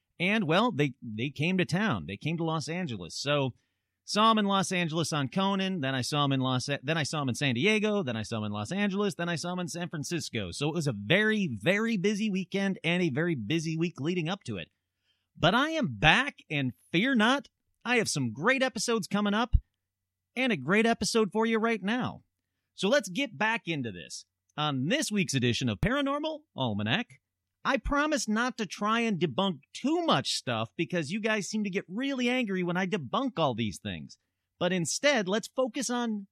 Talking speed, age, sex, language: 215 wpm, 40-59, male, English